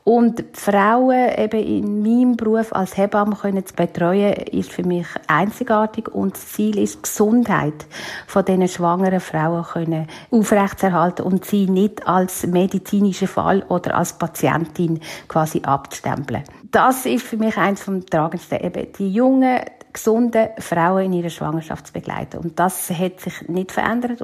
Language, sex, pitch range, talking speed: German, female, 180-220 Hz, 140 wpm